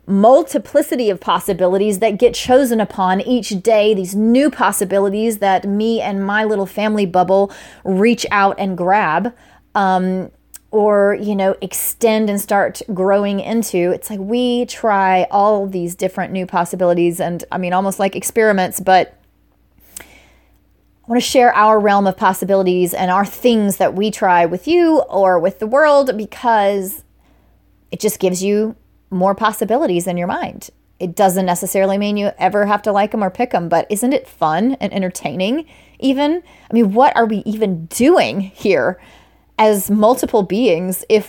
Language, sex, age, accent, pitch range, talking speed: English, female, 30-49, American, 190-235 Hz, 160 wpm